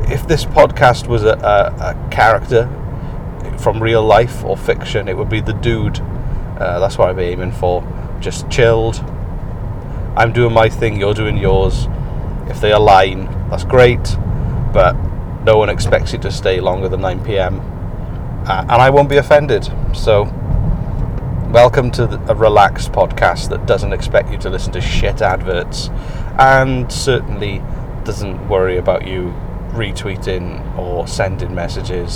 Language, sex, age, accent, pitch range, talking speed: English, male, 30-49, British, 95-120 Hz, 150 wpm